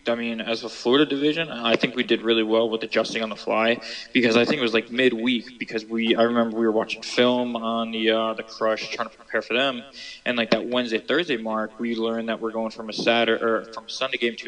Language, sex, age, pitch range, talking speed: English, male, 20-39, 110-120 Hz, 255 wpm